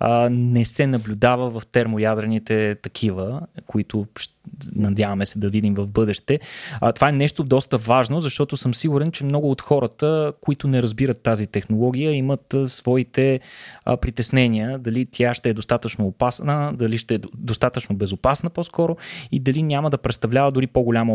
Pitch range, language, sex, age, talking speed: 110-140 Hz, Bulgarian, male, 20-39, 150 wpm